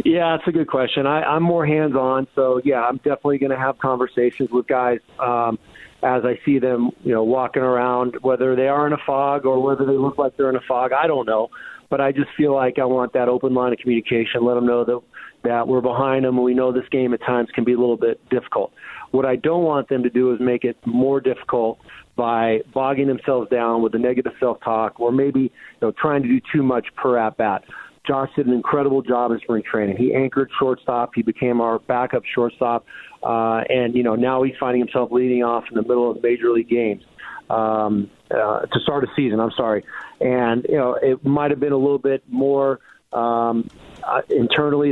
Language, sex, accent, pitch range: English, male, American, 120-135 Hz